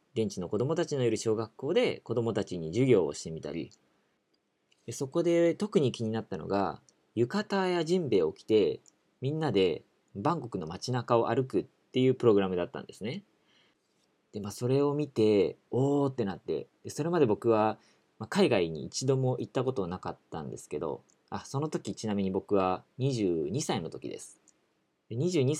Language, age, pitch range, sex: Japanese, 40-59, 100-140 Hz, male